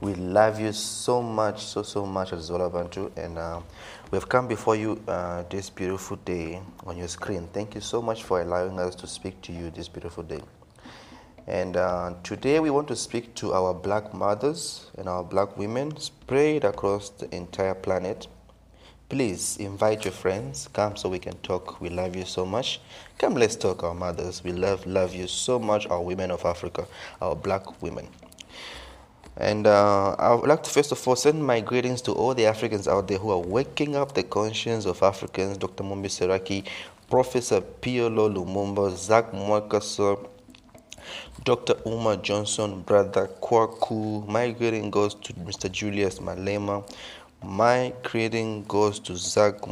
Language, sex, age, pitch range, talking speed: English, male, 30-49, 90-110 Hz, 170 wpm